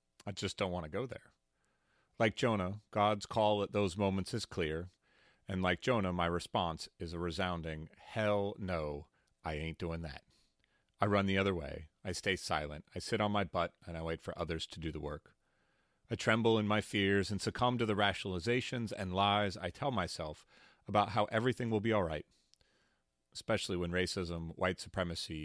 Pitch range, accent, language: 80-105 Hz, American, English